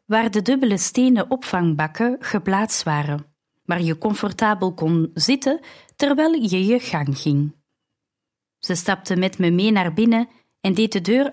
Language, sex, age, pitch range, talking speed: Dutch, female, 30-49, 170-225 Hz, 150 wpm